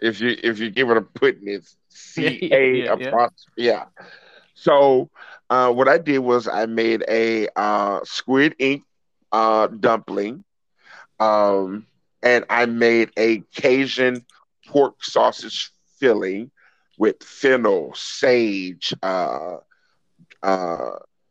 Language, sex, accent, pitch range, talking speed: English, male, American, 100-120 Hz, 105 wpm